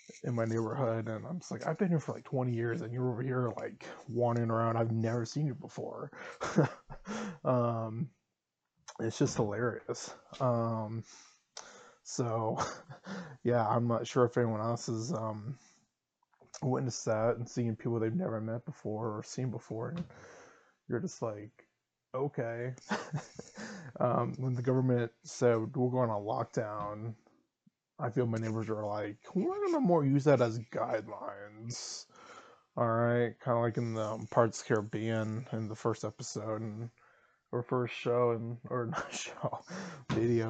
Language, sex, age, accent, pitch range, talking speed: English, male, 20-39, American, 110-130 Hz, 155 wpm